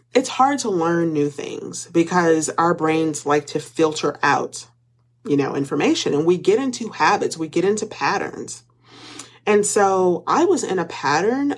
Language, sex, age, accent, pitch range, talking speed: English, female, 30-49, American, 145-205 Hz, 165 wpm